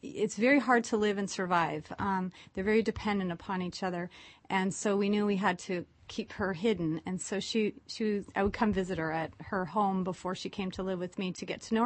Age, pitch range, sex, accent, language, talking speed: 30-49, 190-235 Hz, female, American, English, 245 wpm